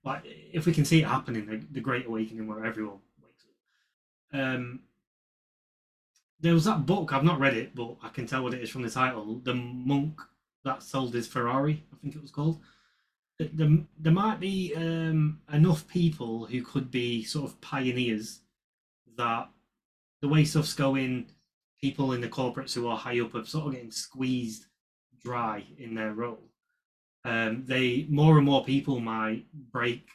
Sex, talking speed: male, 175 wpm